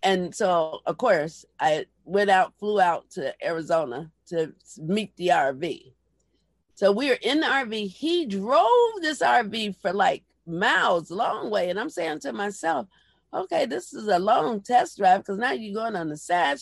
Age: 50-69